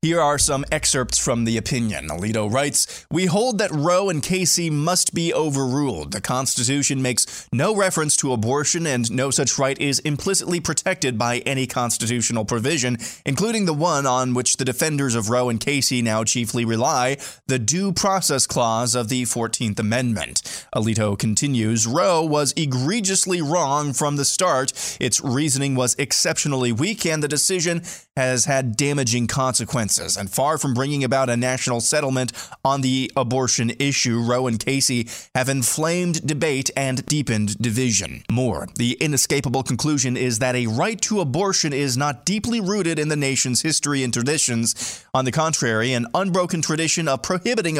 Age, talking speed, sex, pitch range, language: 20-39, 160 wpm, male, 120-155 Hz, English